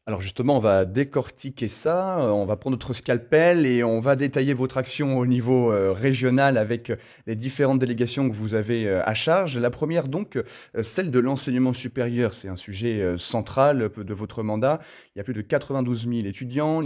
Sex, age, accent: male, 20-39, French